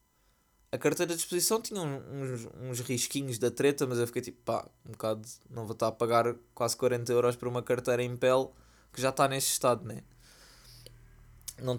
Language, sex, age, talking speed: Portuguese, male, 20-39, 190 wpm